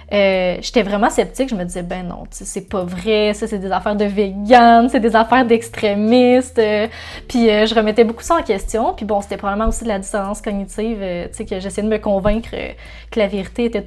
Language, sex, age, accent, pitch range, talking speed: French, female, 20-39, Canadian, 200-245 Hz, 225 wpm